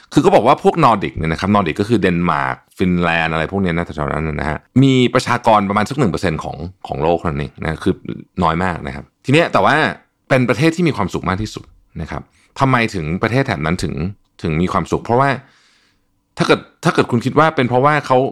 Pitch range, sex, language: 85-125 Hz, male, Thai